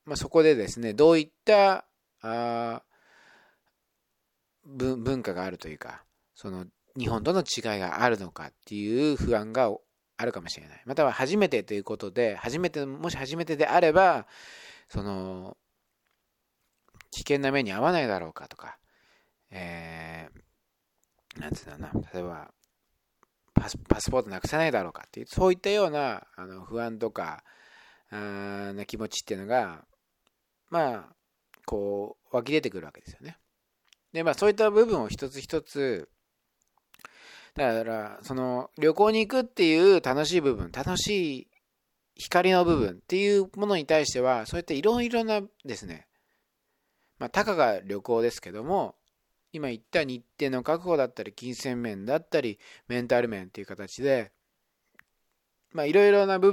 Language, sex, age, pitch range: Japanese, male, 40-59, 105-170 Hz